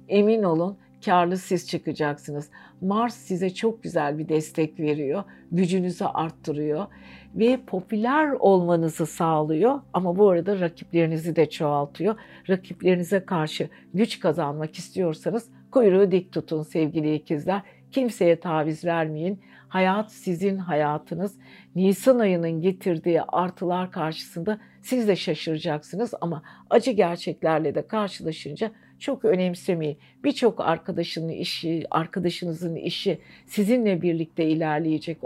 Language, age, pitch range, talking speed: Turkish, 60-79, 160-210 Hz, 105 wpm